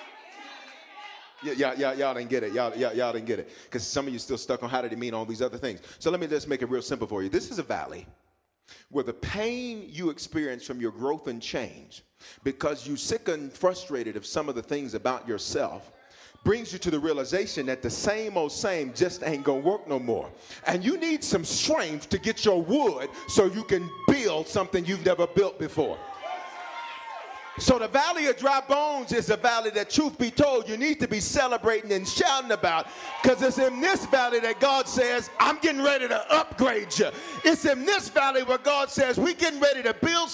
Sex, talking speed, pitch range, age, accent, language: male, 210 wpm, 180-295 Hz, 40-59, American, English